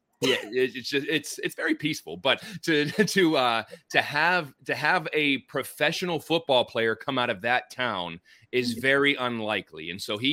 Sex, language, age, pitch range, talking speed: male, Spanish, 30-49, 110-150 Hz, 175 wpm